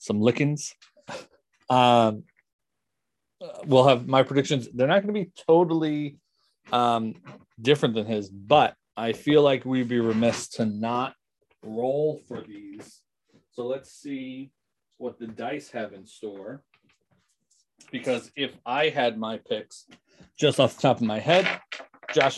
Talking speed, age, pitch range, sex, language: 135 wpm, 30-49, 115-150 Hz, male, English